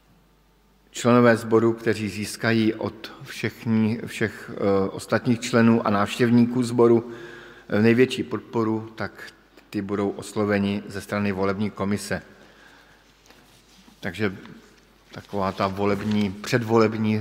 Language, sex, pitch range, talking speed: Slovak, male, 95-110 Hz, 100 wpm